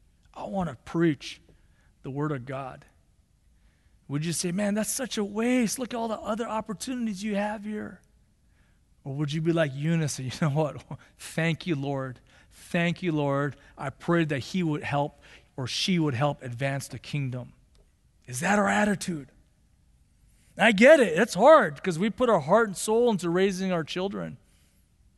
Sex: male